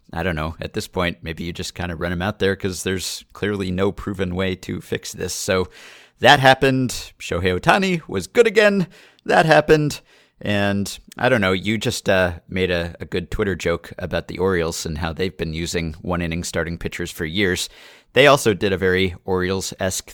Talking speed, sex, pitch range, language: 200 wpm, male, 90-110 Hz, English